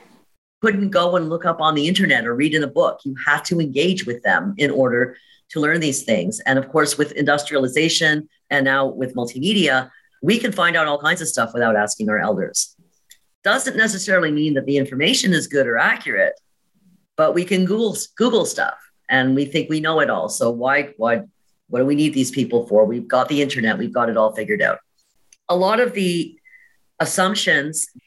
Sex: female